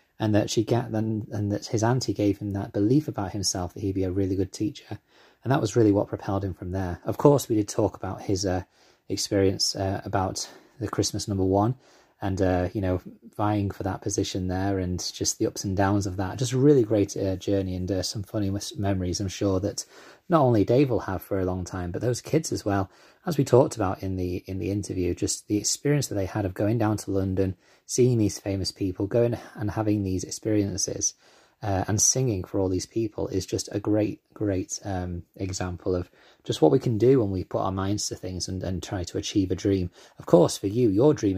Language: English